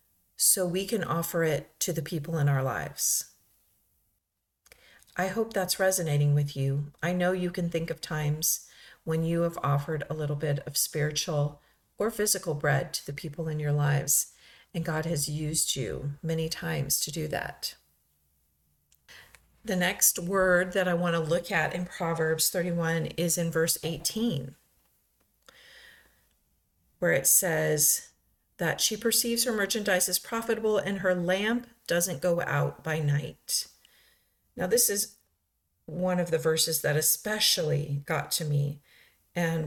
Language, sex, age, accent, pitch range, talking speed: English, female, 40-59, American, 145-180 Hz, 150 wpm